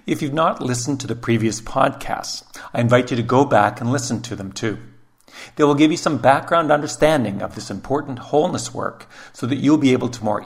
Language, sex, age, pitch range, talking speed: English, male, 50-69, 110-130 Hz, 220 wpm